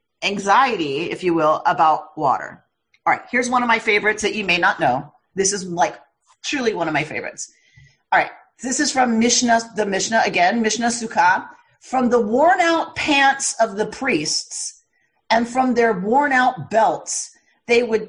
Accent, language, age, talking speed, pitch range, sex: American, English, 40-59, 175 wpm, 220-285 Hz, female